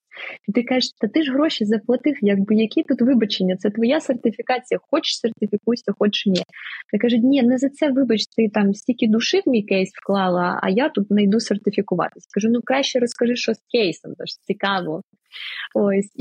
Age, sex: 20-39, female